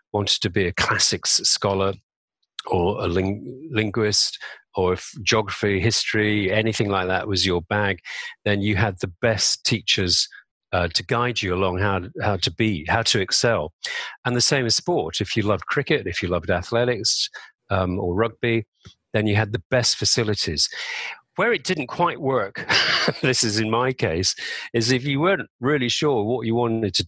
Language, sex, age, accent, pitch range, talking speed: English, male, 40-59, British, 95-125 Hz, 175 wpm